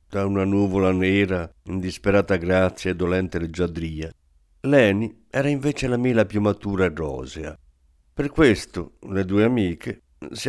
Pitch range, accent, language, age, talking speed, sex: 85-115 Hz, native, Italian, 50-69, 135 wpm, male